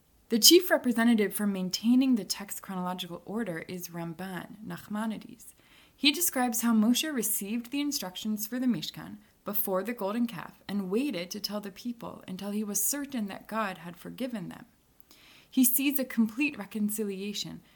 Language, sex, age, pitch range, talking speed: English, female, 20-39, 185-240 Hz, 155 wpm